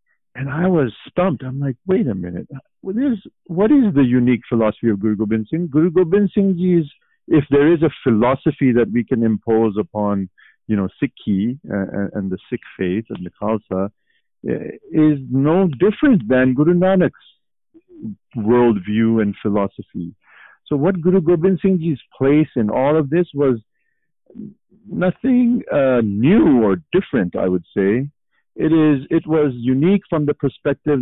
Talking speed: 155 wpm